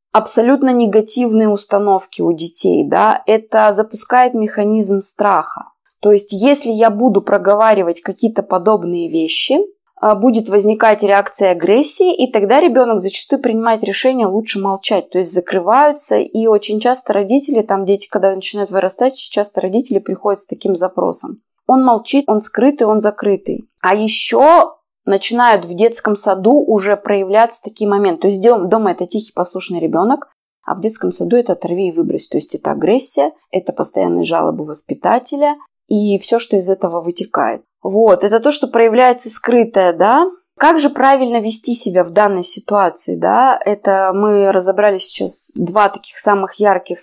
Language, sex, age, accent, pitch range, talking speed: Russian, female, 20-39, native, 195-240 Hz, 150 wpm